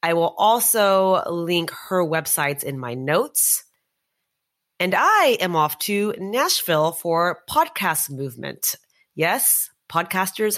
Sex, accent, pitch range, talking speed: female, American, 165-250 Hz, 115 wpm